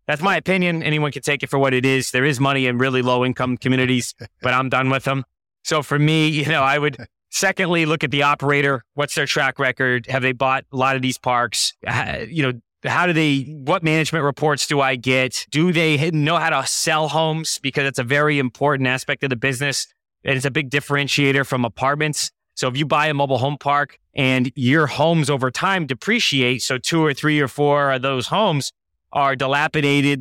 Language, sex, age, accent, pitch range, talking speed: English, male, 20-39, American, 130-150 Hz, 215 wpm